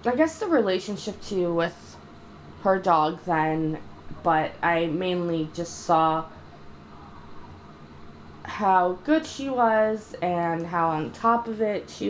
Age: 20-39